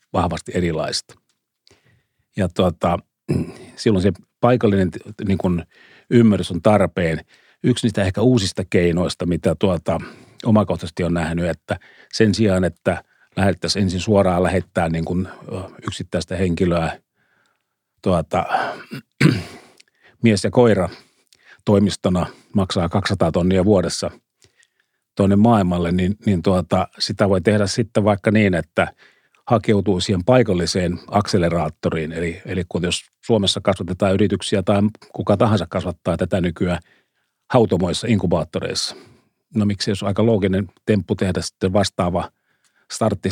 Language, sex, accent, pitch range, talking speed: Finnish, male, native, 90-105 Hz, 115 wpm